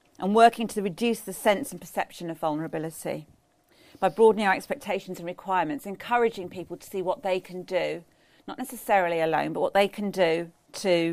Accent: British